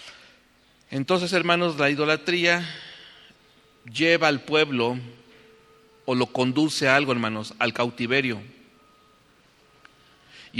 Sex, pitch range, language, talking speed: male, 115-150 Hz, English, 90 wpm